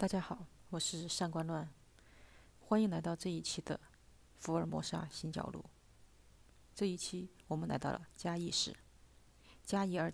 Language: Chinese